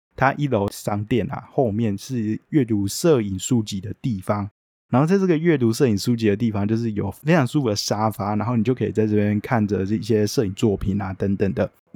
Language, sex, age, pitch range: Chinese, male, 20-39, 100-120 Hz